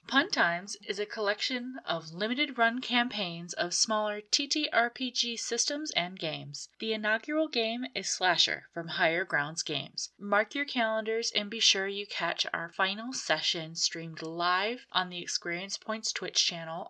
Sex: female